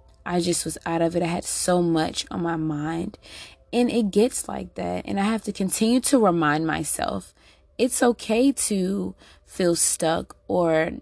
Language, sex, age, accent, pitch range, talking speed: English, female, 20-39, American, 165-200 Hz, 175 wpm